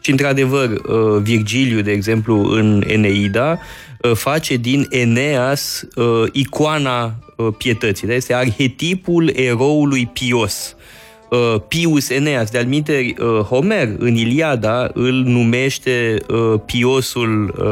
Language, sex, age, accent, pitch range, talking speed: Romanian, male, 20-39, native, 115-145 Hz, 85 wpm